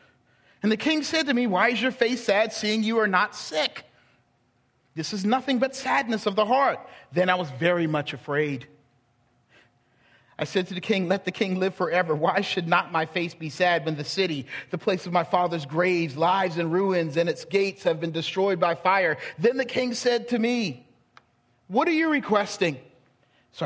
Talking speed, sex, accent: 200 wpm, male, American